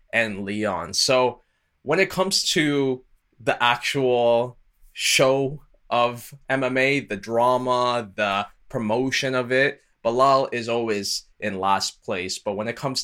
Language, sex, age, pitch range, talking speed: English, male, 20-39, 105-130 Hz, 130 wpm